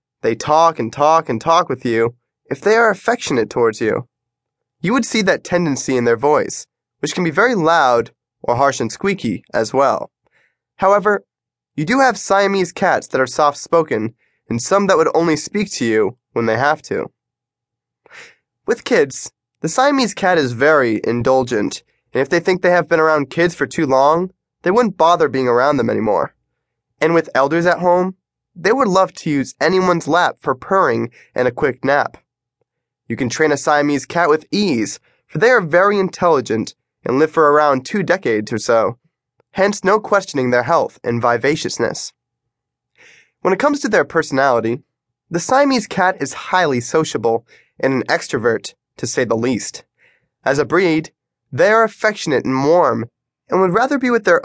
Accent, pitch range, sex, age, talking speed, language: American, 130-190 Hz, male, 20-39, 175 wpm, English